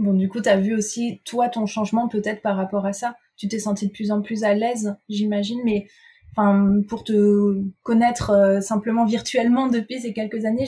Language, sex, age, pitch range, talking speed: French, female, 20-39, 205-235 Hz, 210 wpm